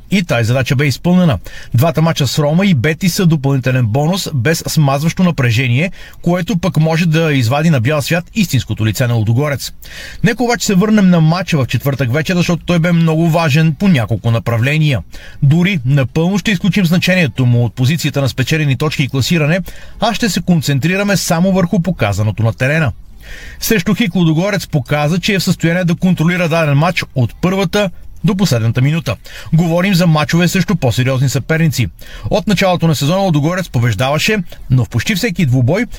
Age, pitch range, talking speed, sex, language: 30-49, 135-180 Hz, 170 wpm, male, Bulgarian